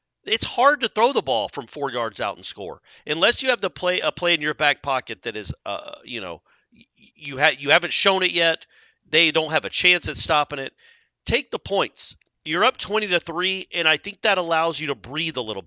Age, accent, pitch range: 40-59, American, 140-190 Hz